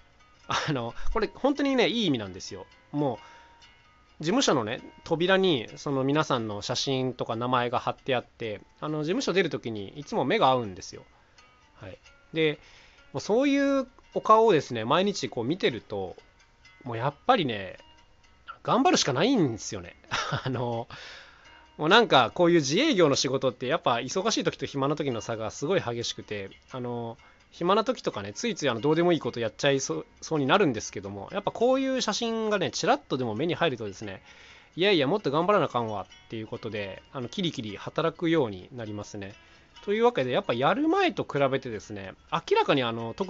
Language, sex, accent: Japanese, male, native